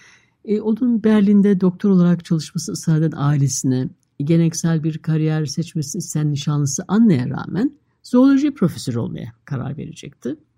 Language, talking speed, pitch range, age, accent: Turkish, 115 wpm, 145-190 Hz, 60-79, native